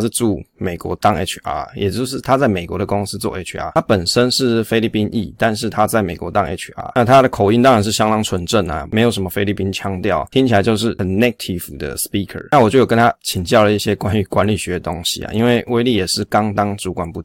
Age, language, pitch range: 20-39, Chinese, 100-120 Hz